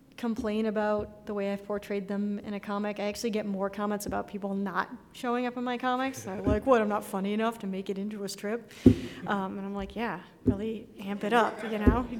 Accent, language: American, English